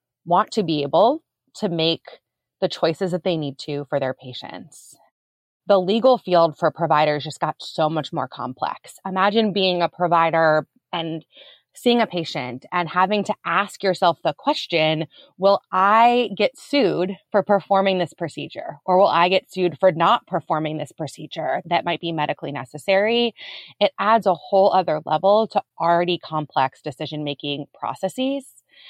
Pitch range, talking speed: 155-195 Hz, 155 wpm